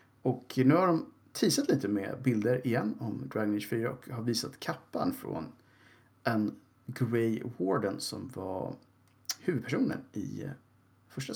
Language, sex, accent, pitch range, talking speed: Swedish, male, Norwegian, 105-130 Hz, 135 wpm